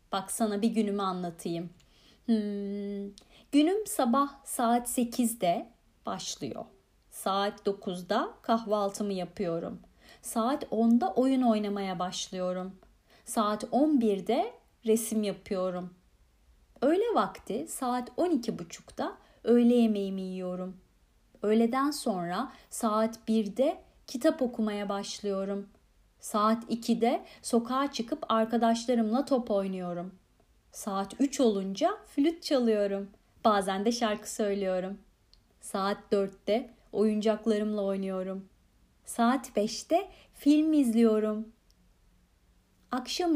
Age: 30-49